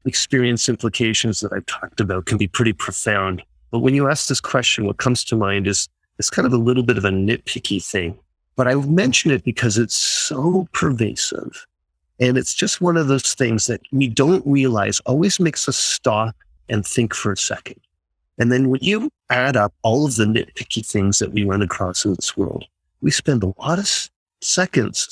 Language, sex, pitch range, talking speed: English, male, 100-130 Hz, 200 wpm